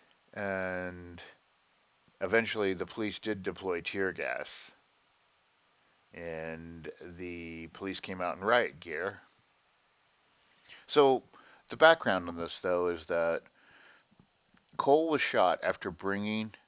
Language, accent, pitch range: English, American, 85-110 Hz